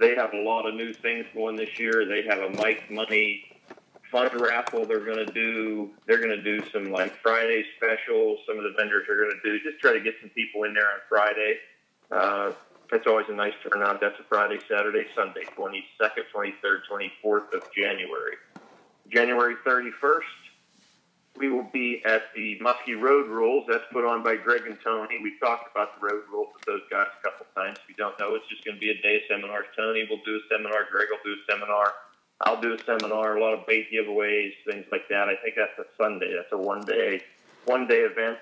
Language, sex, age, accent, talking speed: English, male, 40-59, American, 220 wpm